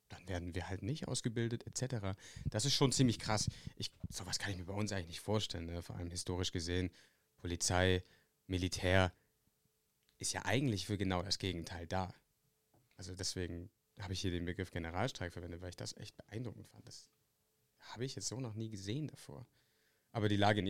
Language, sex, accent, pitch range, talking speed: English, male, German, 90-110 Hz, 190 wpm